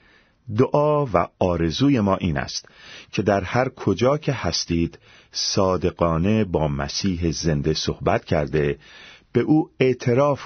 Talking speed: 120 wpm